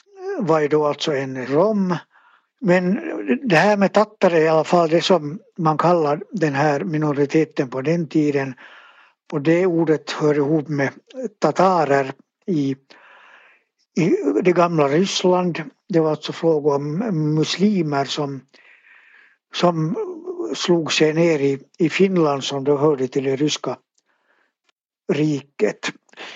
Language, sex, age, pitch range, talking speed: Swedish, male, 60-79, 145-180 Hz, 130 wpm